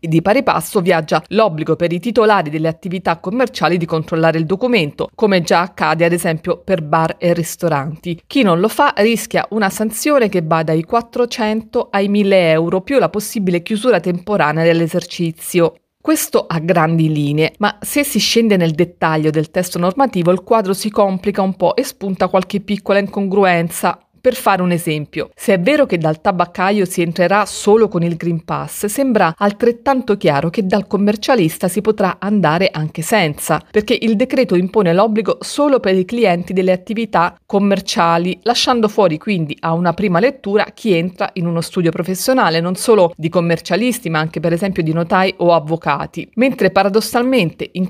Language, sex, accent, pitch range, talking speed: Italian, female, native, 170-215 Hz, 170 wpm